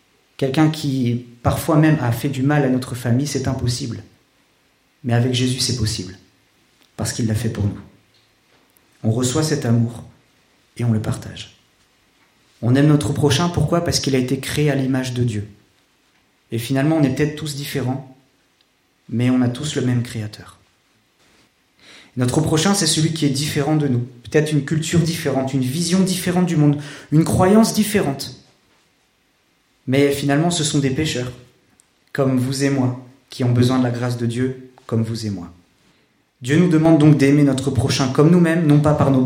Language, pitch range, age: French, 115-145 Hz, 40-59